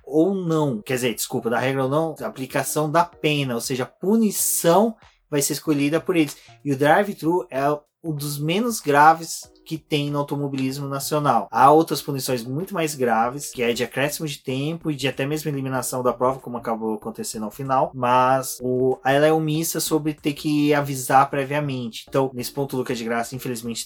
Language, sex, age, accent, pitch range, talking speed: Portuguese, male, 20-39, Brazilian, 130-160 Hz, 195 wpm